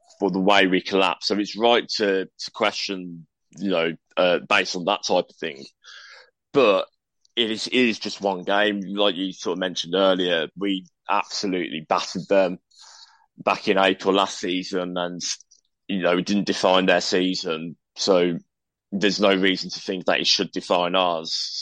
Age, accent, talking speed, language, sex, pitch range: 20-39, British, 170 wpm, English, male, 90-100 Hz